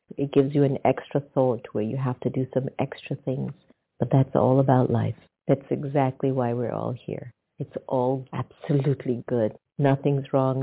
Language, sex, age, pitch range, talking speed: English, female, 60-79, 125-155 Hz, 175 wpm